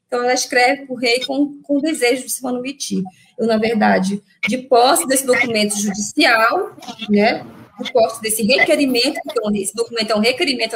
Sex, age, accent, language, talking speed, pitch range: female, 20-39, Brazilian, Portuguese, 180 wpm, 210-265 Hz